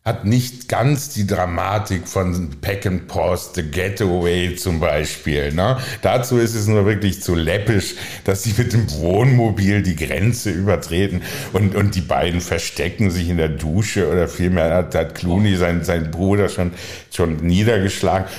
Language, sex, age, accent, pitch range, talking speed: German, male, 60-79, German, 80-100 Hz, 160 wpm